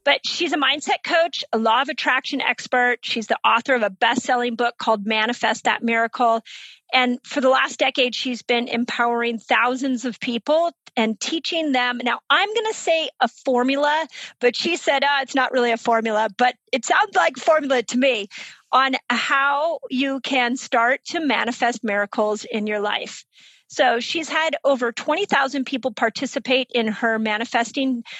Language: English